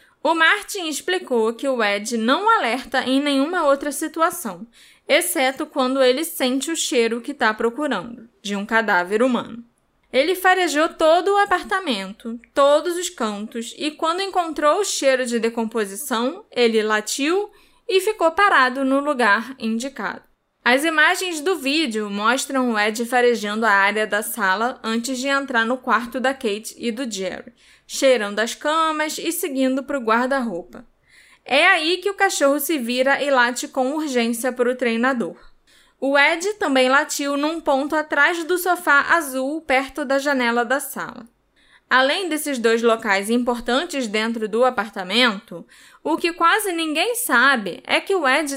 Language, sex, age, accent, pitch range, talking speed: Portuguese, female, 10-29, Brazilian, 235-315 Hz, 155 wpm